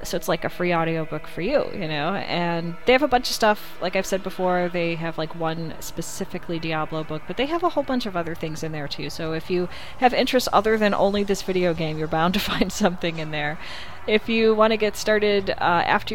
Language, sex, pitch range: English, female, 160-205 Hz